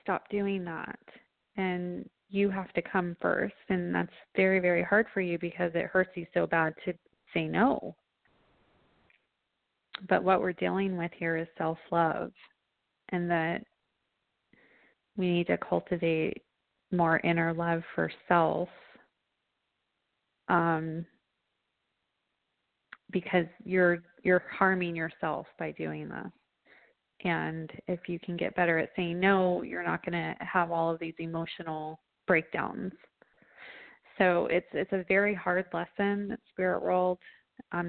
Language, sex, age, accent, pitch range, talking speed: English, female, 30-49, American, 165-190 Hz, 130 wpm